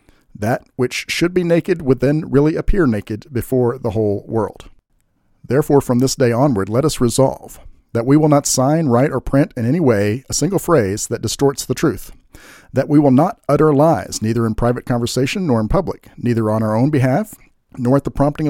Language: English